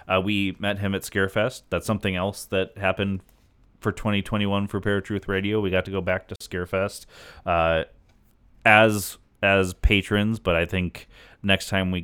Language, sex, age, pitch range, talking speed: English, male, 30-49, 90-105 Hz, 165 wpm